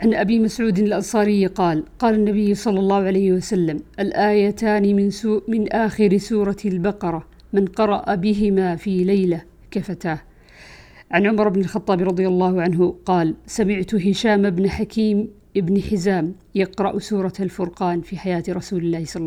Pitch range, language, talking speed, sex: 175-210 Hz, Arabic, 140 wpm, female